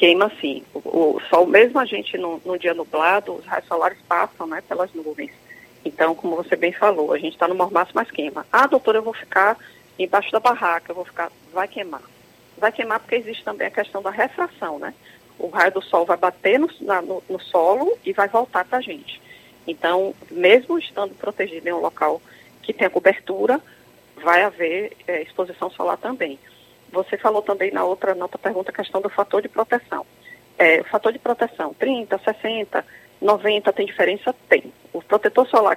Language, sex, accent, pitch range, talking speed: Portuguese, female, Brazilian, 180-225 Hz, 195 wpm